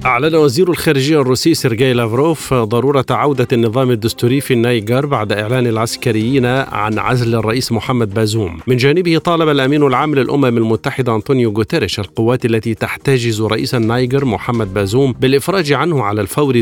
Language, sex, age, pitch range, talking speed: Arabic, male, 50-69, 115-140 Hz, 145 wpm